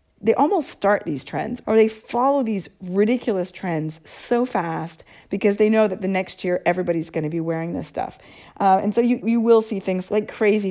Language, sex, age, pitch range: English, female, 40-59, 170-210 Hz